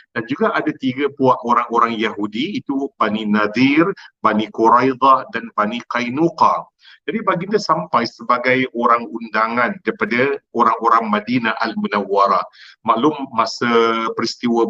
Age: 50-69